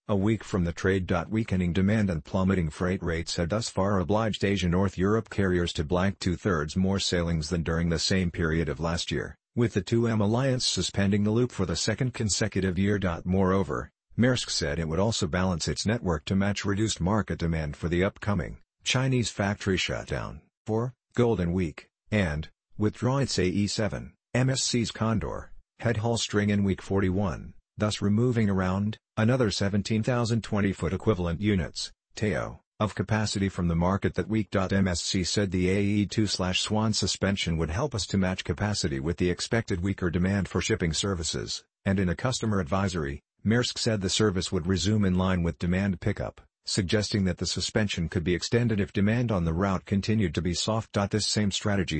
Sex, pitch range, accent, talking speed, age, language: male, 90-110 Hz, American, 170 wpm, 50-69, English